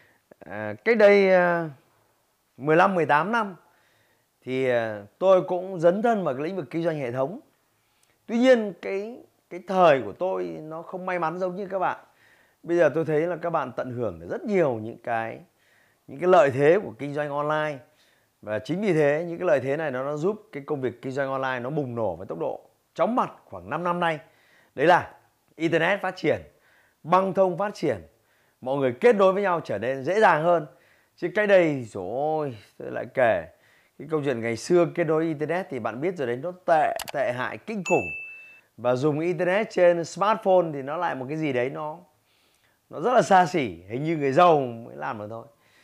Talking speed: 205 wpm